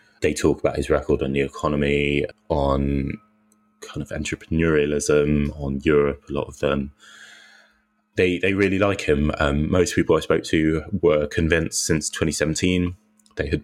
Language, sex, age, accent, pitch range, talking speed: English, male, 20-39, British, 75-90 Hz, 160 wpm